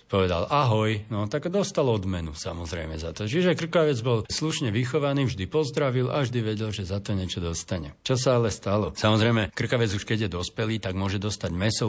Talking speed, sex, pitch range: 190 wpm, male, 95-125 Hz